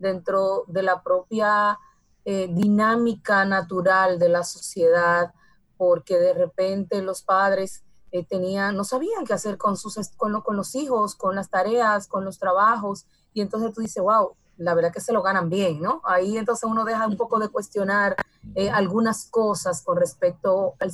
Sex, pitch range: female, 185-220 Hz